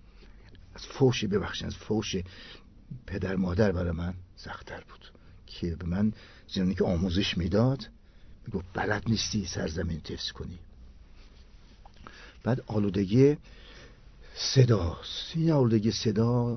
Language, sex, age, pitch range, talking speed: Persian, male, 60-79, 90-115 Hz, 100 wpm